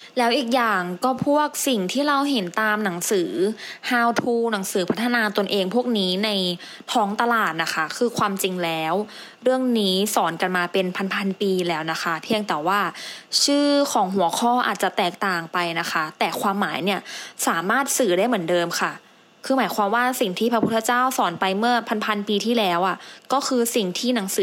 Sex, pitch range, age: female, 185-245 Hz, 20-39